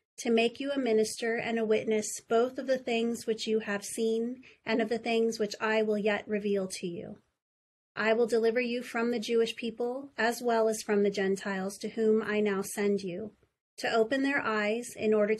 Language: English